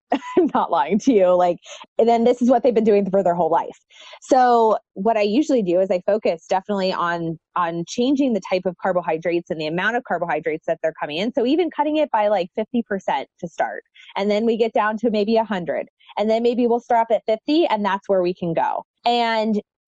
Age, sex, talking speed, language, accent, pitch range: 20-39, female, 230 wpm, English, American, 180-235 Hz